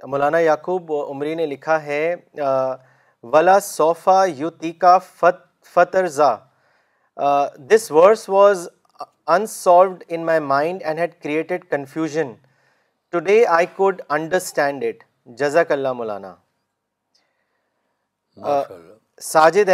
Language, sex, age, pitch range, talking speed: Urdu, male, 40-59, 150-185 Hz, 95 wpm